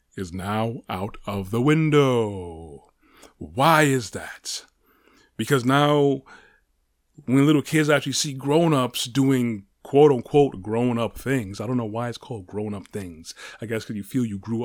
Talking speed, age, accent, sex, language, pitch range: 150 wpm, 30-49, American, male, English, 110-130 Hz